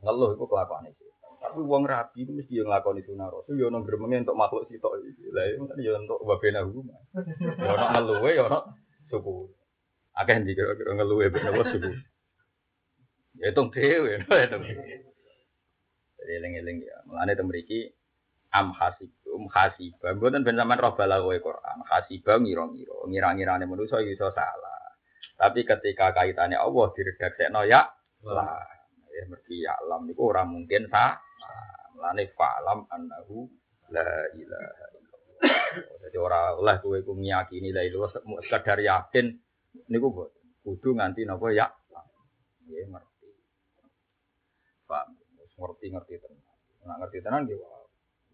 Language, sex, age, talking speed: Indonesian, male, 30-49, 130 wpm